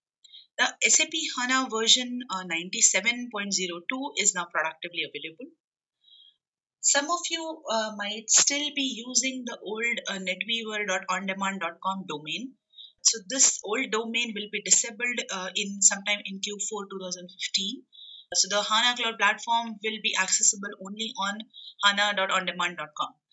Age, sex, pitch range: 30-49, female, 190-240 Hz